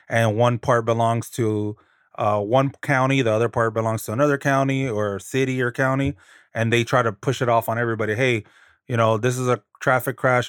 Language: English